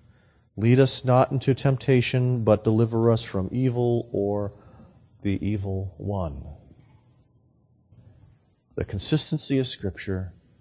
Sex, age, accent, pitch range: male, 40-59, American, 105-135 Hz